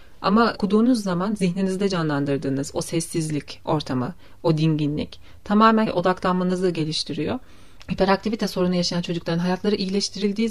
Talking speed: 110 wpm